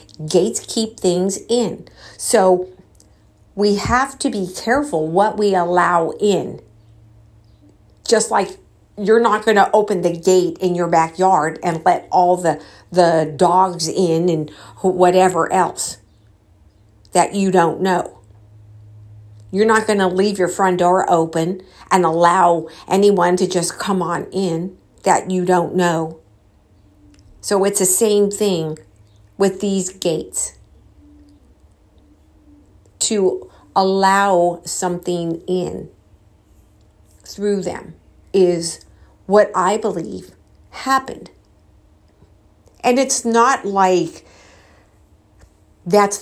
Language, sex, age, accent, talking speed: English, female, 50-69, American, 110 wpm